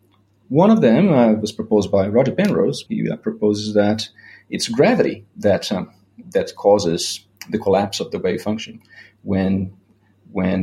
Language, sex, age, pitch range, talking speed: English, male, 30-49, 100-110 Hz, 150 wpm